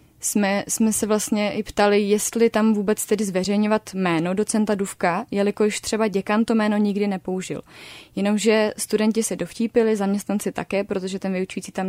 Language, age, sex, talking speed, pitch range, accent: Czech, 20-39, female, 155 wpm, 195-215 Hz, native